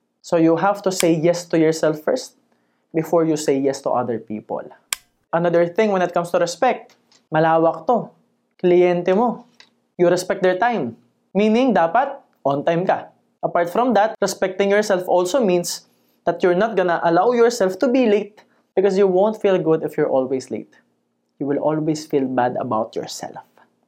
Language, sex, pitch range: Filipino, male, 170-230 Hz